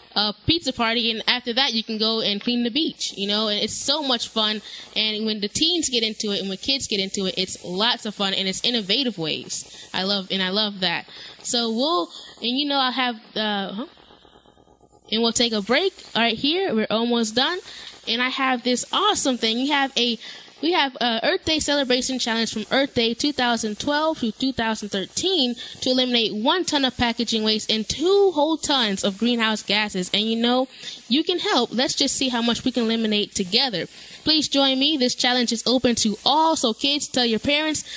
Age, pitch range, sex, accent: 10-29, 220-270 Hz, female, American